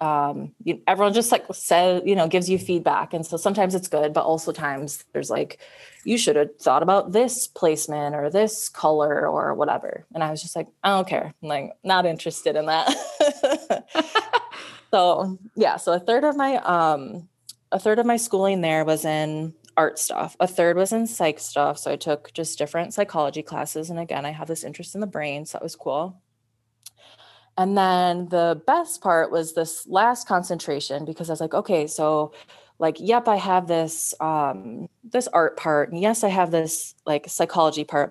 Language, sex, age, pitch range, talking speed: English, female, 20-39, 155-195 Hz, 190 wpm